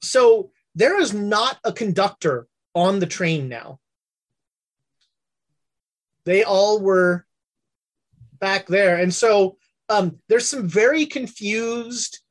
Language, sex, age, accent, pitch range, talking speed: English, male, 30-49, American, 175-225 Hz, 105 wpm